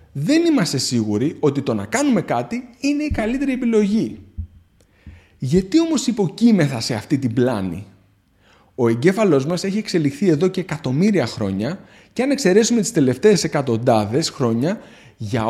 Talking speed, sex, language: 140 wpm, male, Greek